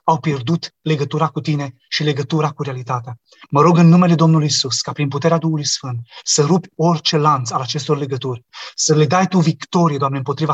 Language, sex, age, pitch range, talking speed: Romanian, male, 30-49, 145-170 Hz, 195 wpm